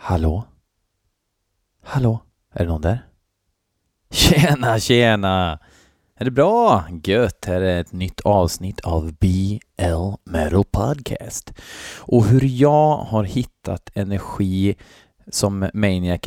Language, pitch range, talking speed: Swedish, 90-110 Hz, 105 wpm